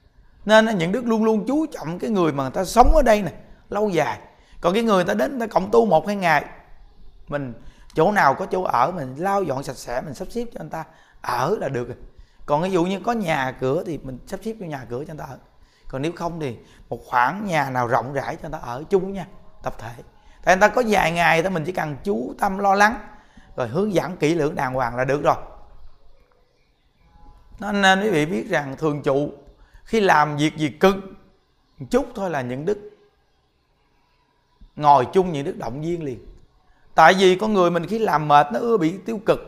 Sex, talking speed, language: male, 225 wpm, Vietnamese